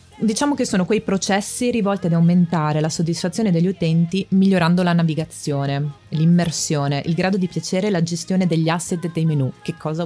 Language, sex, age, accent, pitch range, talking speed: Italian, female, 20-39, native, 155-185 Hz, 175 wpm